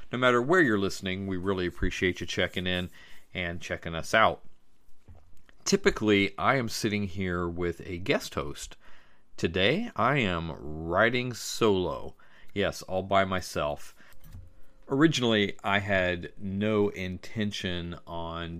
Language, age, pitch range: English, 40-59, 85-100 Hz